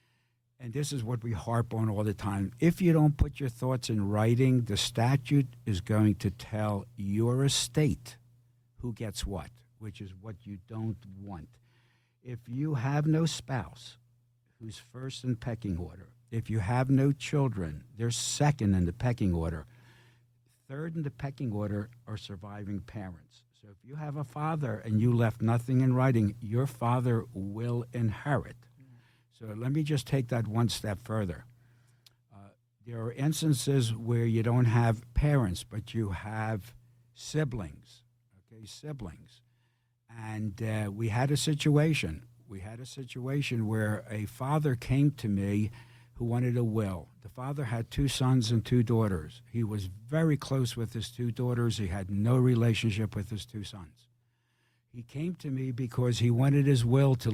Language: English